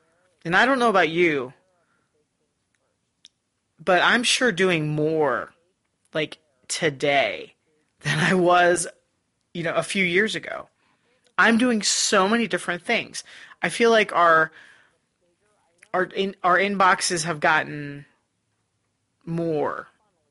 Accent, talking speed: American, 115 wpm